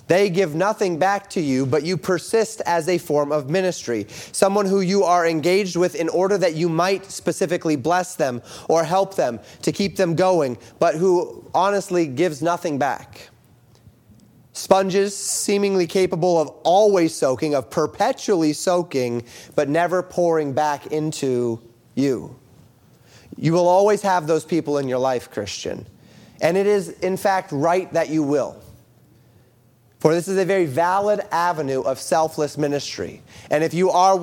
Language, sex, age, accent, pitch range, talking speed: English, male, 30-49, American, 150-190 Hz, 155 wpm